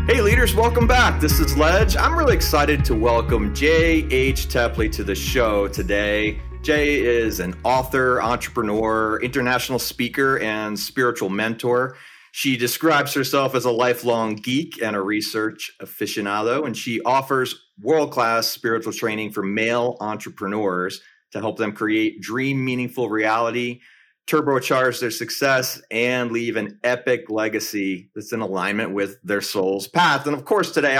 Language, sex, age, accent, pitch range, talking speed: English, male, 40-59, American, 105-130 Hz, 145 wpm